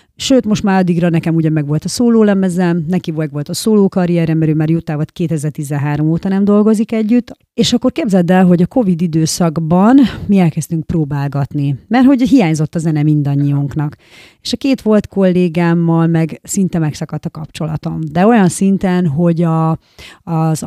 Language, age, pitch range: Hungarian, 30-49, 155-185 Hz